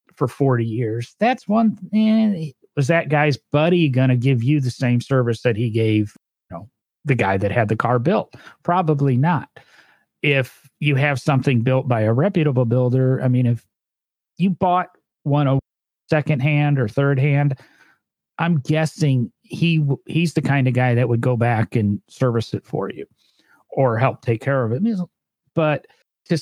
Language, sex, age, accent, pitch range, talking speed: English, male, 40-59, American, 120-150 Hz, 175 wpm